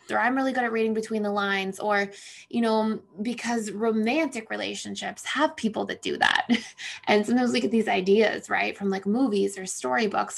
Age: 20-39